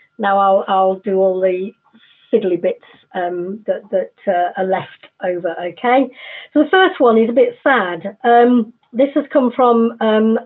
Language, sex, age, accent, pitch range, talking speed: English, female, 50-69, British, 195-240 Hz, 170 wpm